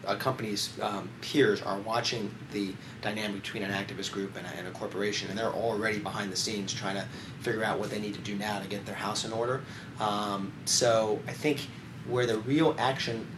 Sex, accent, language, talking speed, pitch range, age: male, American, English, 205 wpm, 100-120 Hz, 30-49